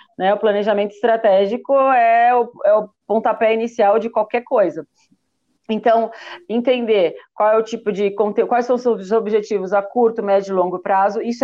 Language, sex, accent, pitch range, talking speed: Portuguese, female, Brazilian, 205-245 Hz, 175 wpm